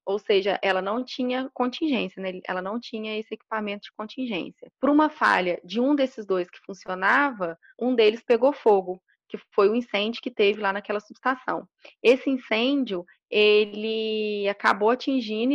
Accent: Brazilian